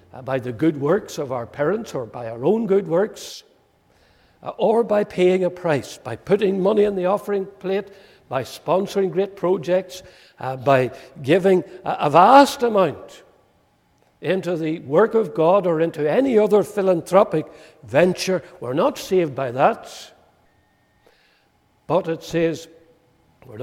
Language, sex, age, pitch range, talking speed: English, male, 60-79, 140-180 Hz, 140 wpm